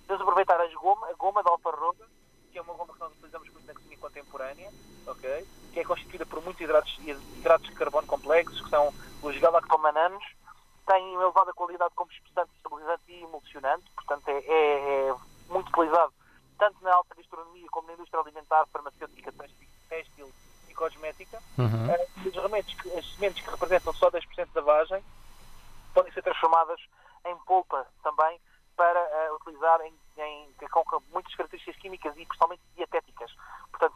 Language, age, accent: Portuguese, 20-39, Portuguese